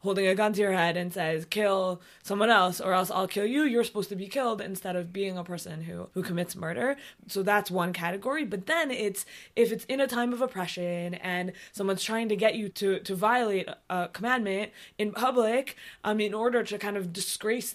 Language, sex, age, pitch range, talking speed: English, female, 20-39, 185-235 Hz, 215 wpm